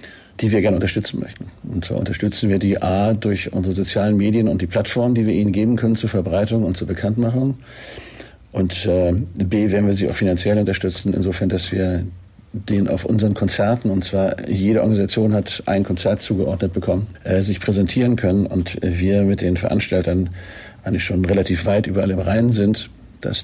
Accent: German